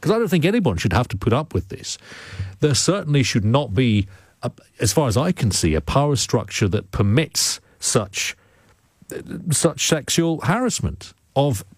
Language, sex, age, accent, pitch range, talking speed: English, male, 40-59, British, 95-140 Hz, 170 wpm